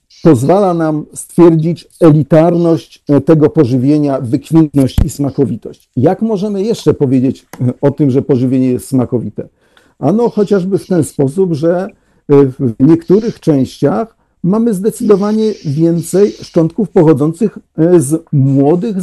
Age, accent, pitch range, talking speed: 50-69, native, 135-200 Hz, 110 wpm